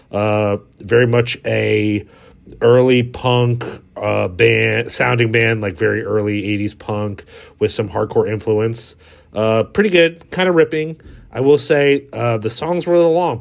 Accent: American